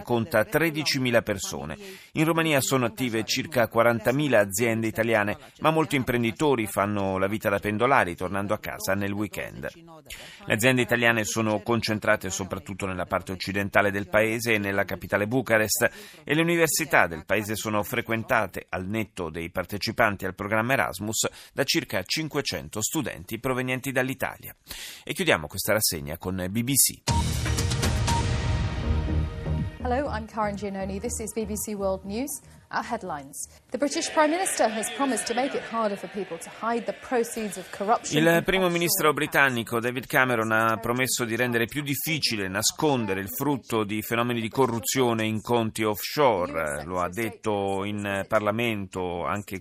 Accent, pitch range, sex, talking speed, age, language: native, 100-140 Hz, male, 125 wpm, 30-49, Italian